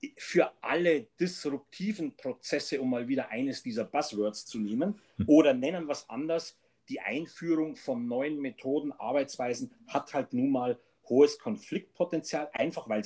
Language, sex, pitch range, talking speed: German, male, 145-215 Hz, 140 wpm